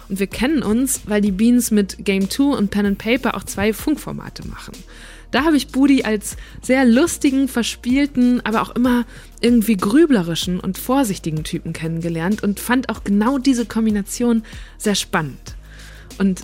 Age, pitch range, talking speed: 20-39, 200-245 Hz, 155 wpm